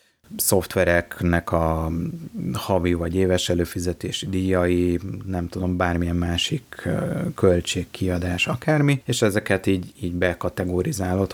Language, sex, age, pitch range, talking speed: Hungarian, male, 30-49, 90-105 Hz, 95 wpm